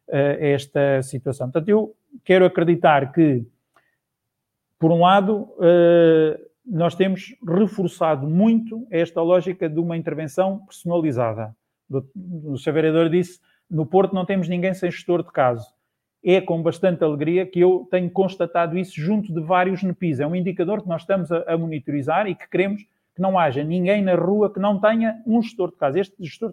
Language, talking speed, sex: Portuguese, 165 wpm, male